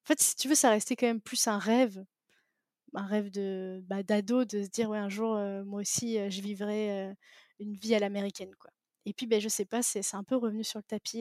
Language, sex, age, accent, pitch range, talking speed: French, female, 20-39, French, 205-235 Hz, 245 wpm